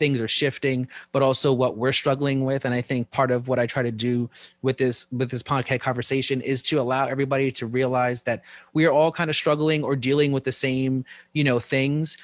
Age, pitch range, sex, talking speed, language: 30-49, 125-140 Hz, male, 225 wpm, English